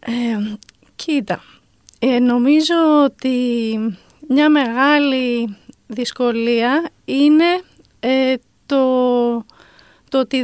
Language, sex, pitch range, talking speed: Greek, female, 240-285 Hz, 55 wpm